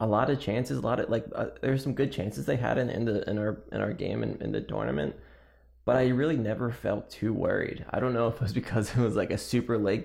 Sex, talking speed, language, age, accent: male, 280 wpm, English, 20-39, American